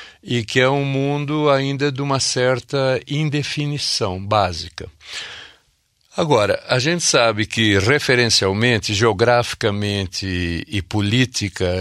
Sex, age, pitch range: male, 60-79, 100-125 Hz